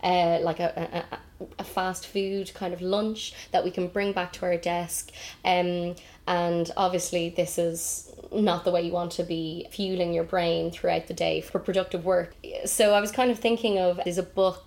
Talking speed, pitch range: 200 wpm, 170-185 Hz